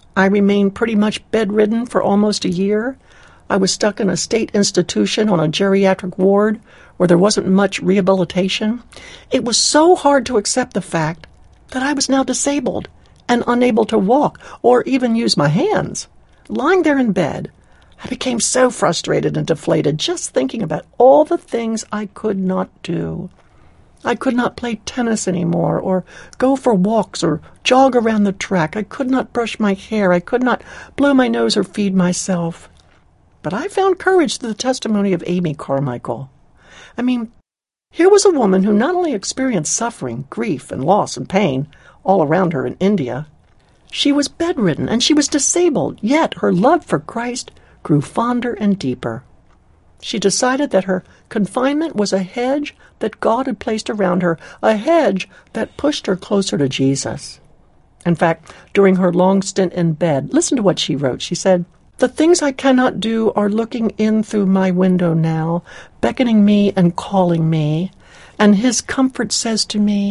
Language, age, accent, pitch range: English, 60-79, American, 185-250 Hz